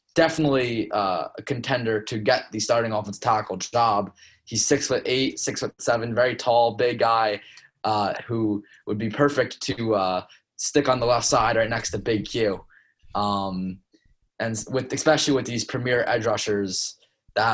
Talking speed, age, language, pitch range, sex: 165 wpm, 20-39, English, 105-130 Hz, male